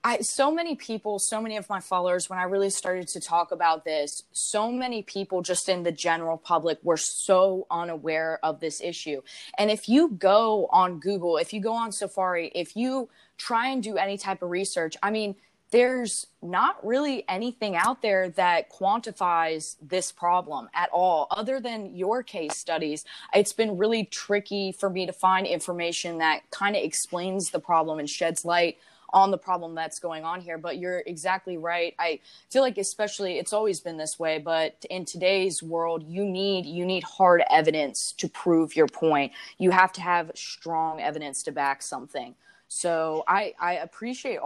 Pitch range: 170-210 Hz